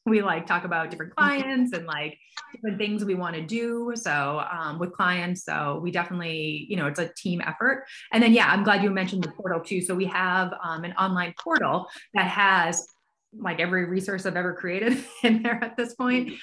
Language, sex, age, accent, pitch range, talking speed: English, female, 20-39, American, 170-235 Hz, 210 wpm